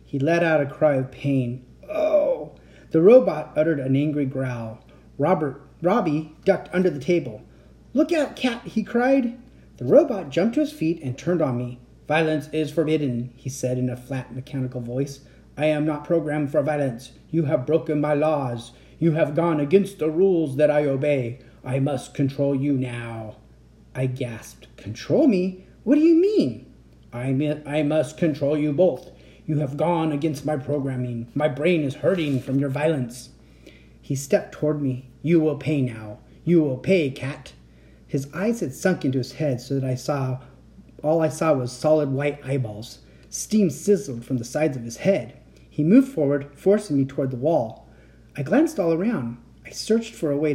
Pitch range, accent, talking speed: 130-165 Hz, American, 180 wpm